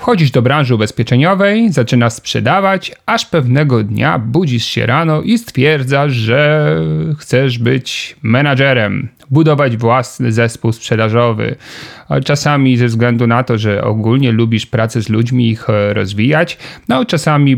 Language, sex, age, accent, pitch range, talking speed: Polish, male, 40-59, native, 115-145 Hz, 130 wpm